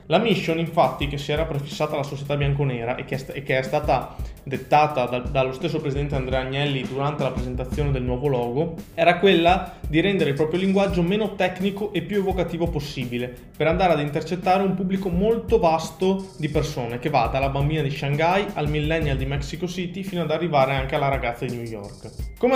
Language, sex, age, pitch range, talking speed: Italian, male, 20-39, 135-175 Hz, 190 wpm